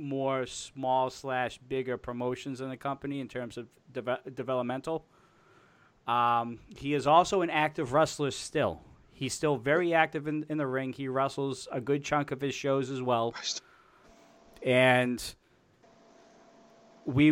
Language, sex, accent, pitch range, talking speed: English, male, American, 125-150 Hz, 140 wpm